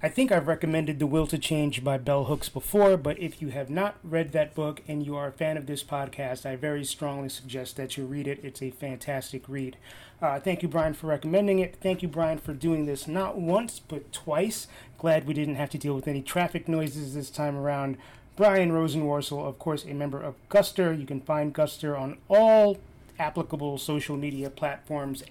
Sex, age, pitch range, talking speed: male, 30-49, 140-170 Hz, 210 wpm